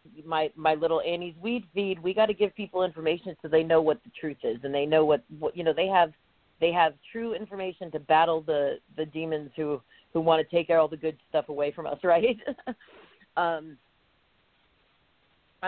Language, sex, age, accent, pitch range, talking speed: English, female, 40-59, American, 155-195 Hz, 195 wpm